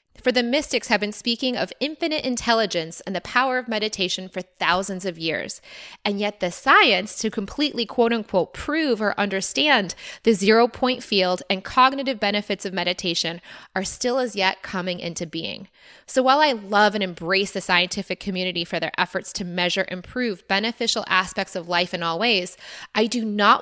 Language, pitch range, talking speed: English, 190-245 Hz, 180 wpm